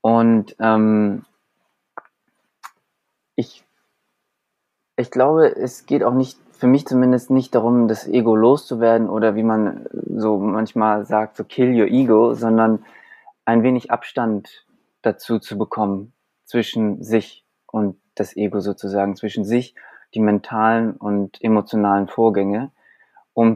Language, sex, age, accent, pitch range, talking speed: German, male, 20-39, German, 105-125 Hz, 120 wpm